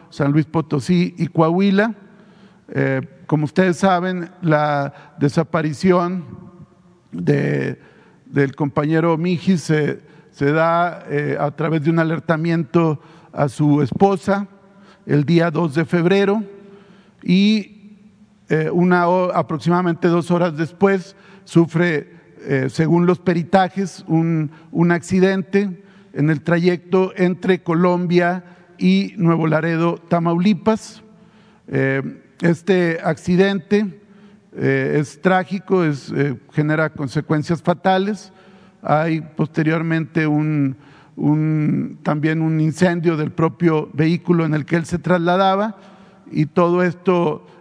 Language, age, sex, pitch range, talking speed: Spanish, 50-69, male, 155-185 Hz, 95 wpm